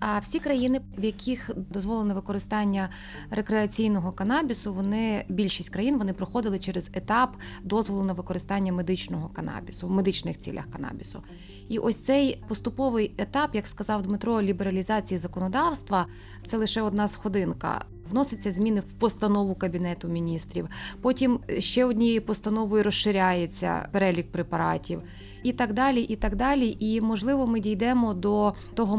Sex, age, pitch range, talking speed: female, 20-39, 185-230 Hz, 130 wpm